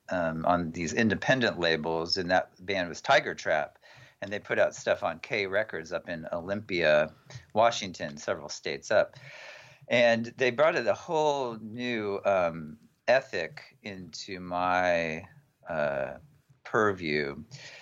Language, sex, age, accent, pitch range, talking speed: English, male, 40-59, American, 85-115 Hz, 130 wpm